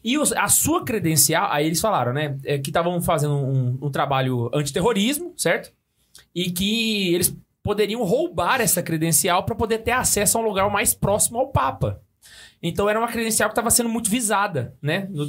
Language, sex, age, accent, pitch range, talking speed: Portuguese, male, 20-39, Brazilian, 150-230 Hz, 175 wpm